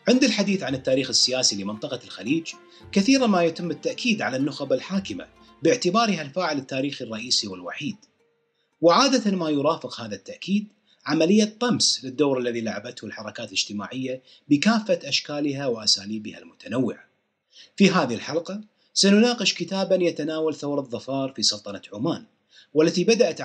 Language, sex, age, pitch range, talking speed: Arabic, male, 30-49, 130-205 Hz, 125 wpm